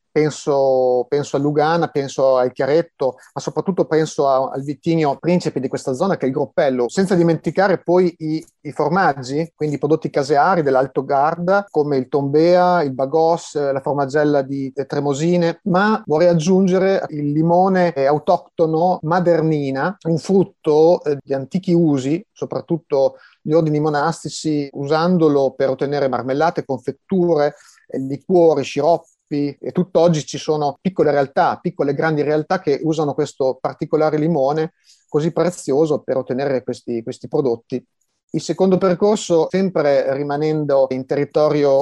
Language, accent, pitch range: Italian, native, 140-170 Hz